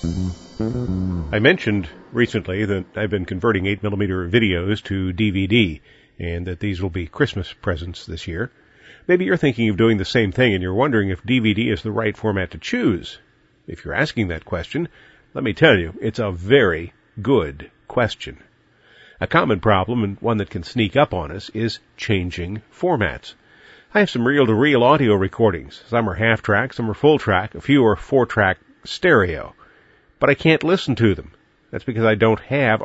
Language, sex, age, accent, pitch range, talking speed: English, male, 40-59, American, 95-120 Hz, 175 wpm